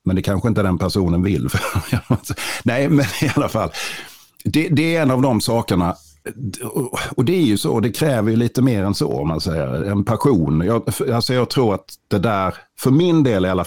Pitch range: 85-115 Hz